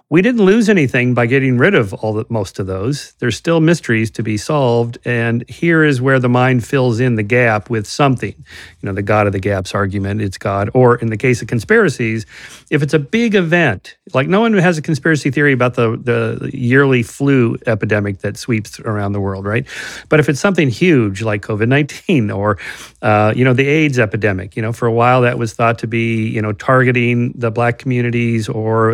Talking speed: 210 wpm